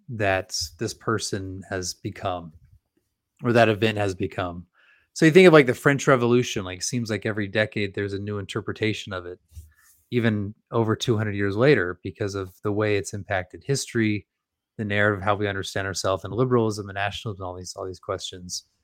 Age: 30-49